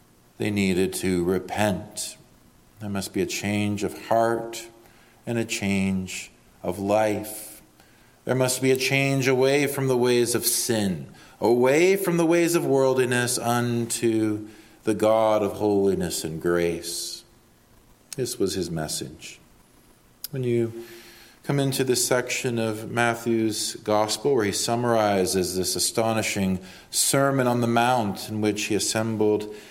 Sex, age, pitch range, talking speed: male, 40-59, 100-120 Hz, 135 wpm